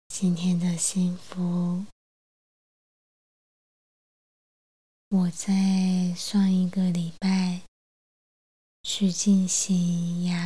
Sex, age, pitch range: female, 20-39, 175-185 Hz